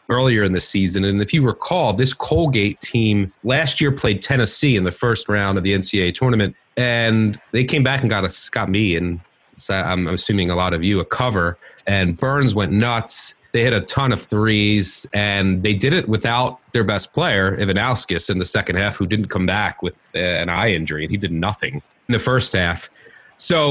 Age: 30-49